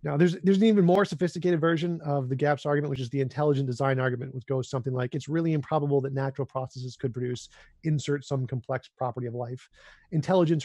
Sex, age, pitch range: male, 30-49, 125-145 Hz